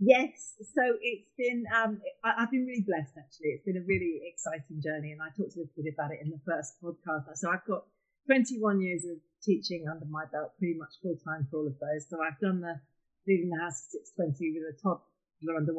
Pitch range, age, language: 155-190 Hz, 40-59, English